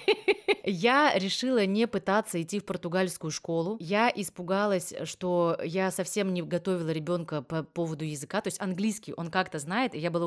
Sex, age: female, 20-39